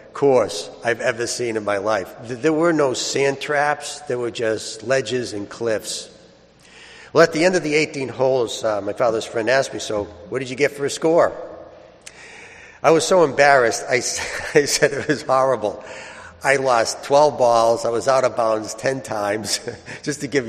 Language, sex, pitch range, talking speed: English, male, 105-140 Hz, 185 wpm